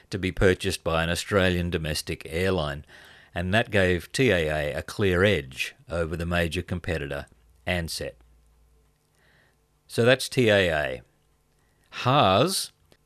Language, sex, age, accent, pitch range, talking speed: English, male, 50-69, Australian, 85-110 Hz, 110 wpm